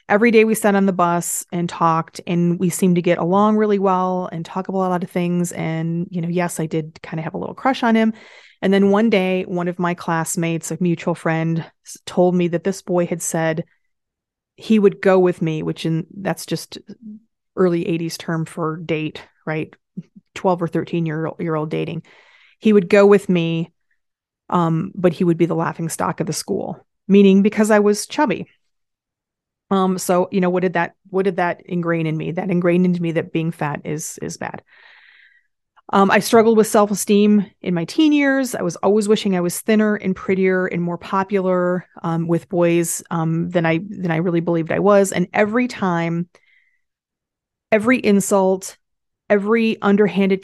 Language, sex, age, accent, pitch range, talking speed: English, female, 30-49, American, 170-205 Hz, 195 wpm